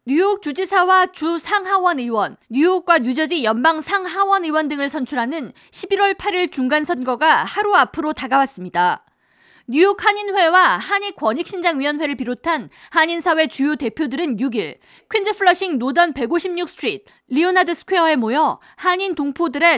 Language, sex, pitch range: Korean, female, 265-365 Hz